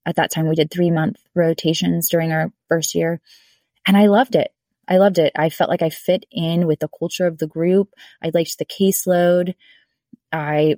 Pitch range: 155-190 Hz